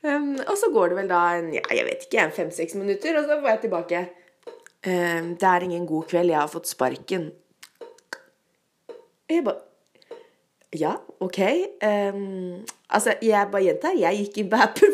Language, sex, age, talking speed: English, female, 20-39, 175 wpm